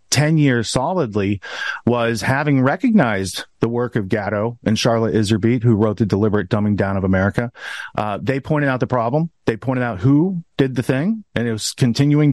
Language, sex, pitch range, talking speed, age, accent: English, male, 110-135 Hz, 185 wpm, 40-59, American